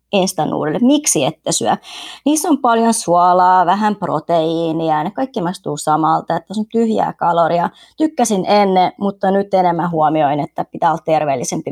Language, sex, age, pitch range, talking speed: Finnish, male, 30-49, 165-215 Hz, 145 wpm